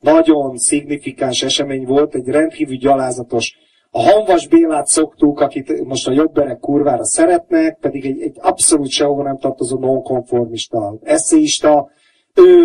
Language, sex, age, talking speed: Hungarian, male, 30-49, 130 wpm